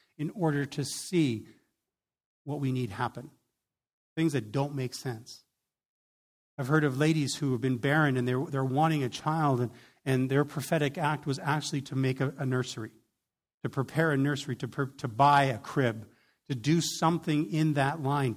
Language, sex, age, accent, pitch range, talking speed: English, male, 50-69, American, 130-165 Hz, 180 wpm